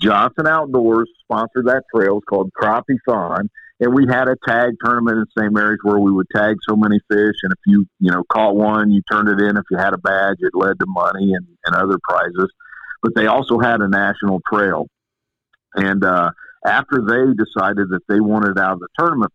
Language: English